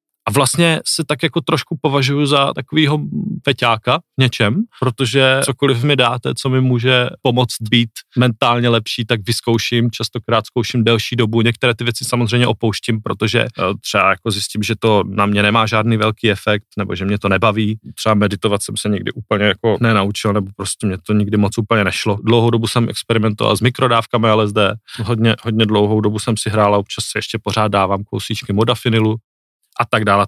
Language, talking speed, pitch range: Czech, 180 wpm, 105-125 Hz